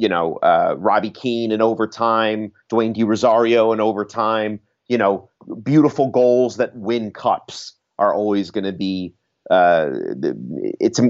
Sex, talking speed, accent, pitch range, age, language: male, 140 wpm, American, 110-140 Hz, 30-49, English